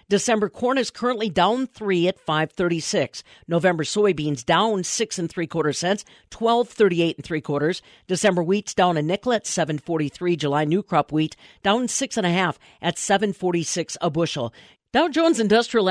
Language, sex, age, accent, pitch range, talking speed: English, female, 50-69, American, 165-220 Hz, 160 wpm